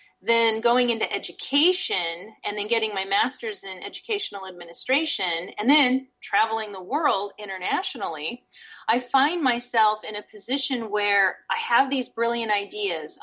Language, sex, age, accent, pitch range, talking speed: English, female, 30-49, American, 210-290 Hz, 135 wpm